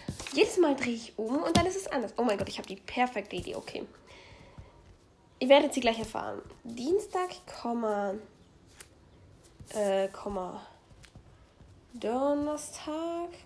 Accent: German